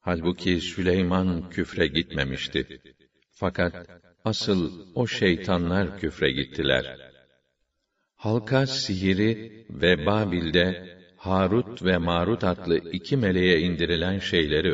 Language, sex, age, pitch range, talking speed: Turkish, male, 60-79, 90-105 Hz, 90 wpm